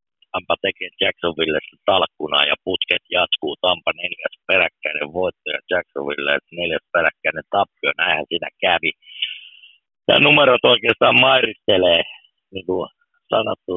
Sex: male